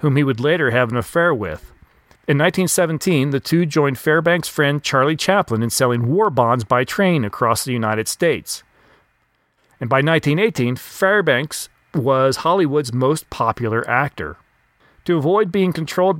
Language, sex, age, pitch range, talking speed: English, male, 40-59, 125-165 Hz, 150 wpm